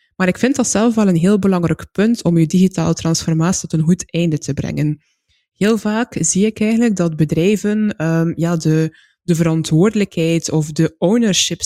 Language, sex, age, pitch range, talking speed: Dutch, female, 20-39, 165-210 Hz, 180 wpm